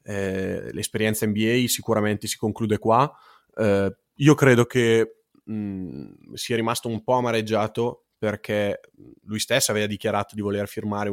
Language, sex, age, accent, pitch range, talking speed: Italian, male, 20-39, native, 105-115 Hz, 130 wpm